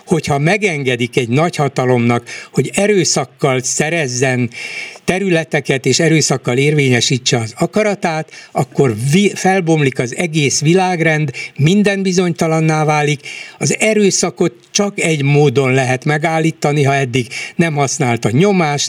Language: Hungarian